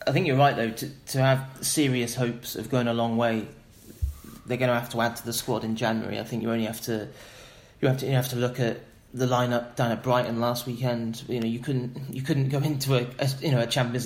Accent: British